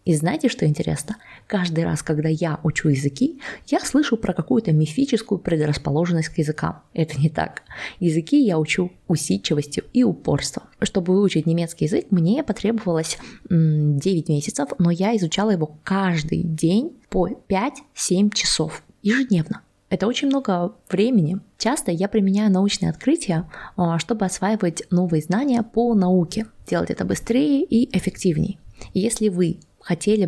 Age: 20-39